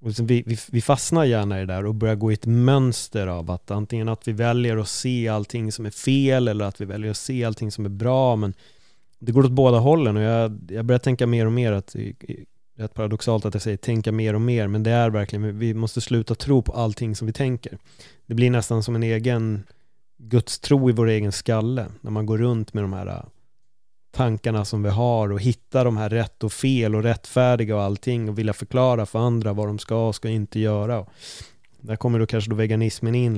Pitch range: 105-120 Hz